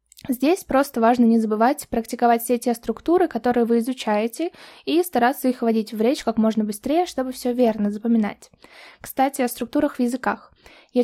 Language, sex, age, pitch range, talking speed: Russian, female, 10-29, 220-255 Hz, 170 wpm